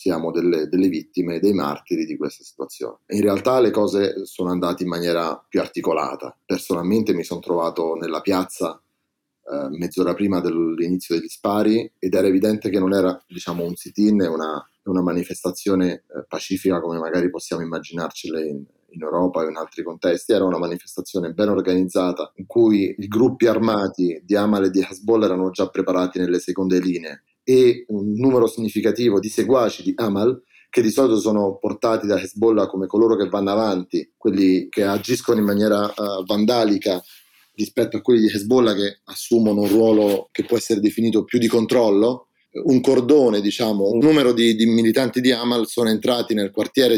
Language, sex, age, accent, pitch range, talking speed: Italian, male, 30-49, native, 90-115 Hz, 170 wpm